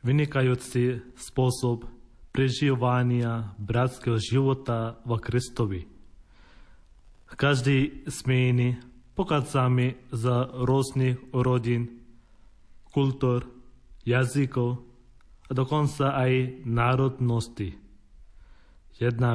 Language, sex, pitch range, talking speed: Slovak, male, 115-135 Hz, 65 wpm